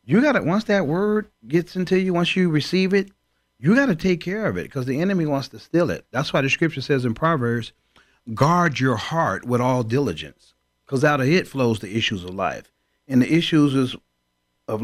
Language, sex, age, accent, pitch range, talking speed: English, male, 40-59, American, 115-160 Hz, 215 wpm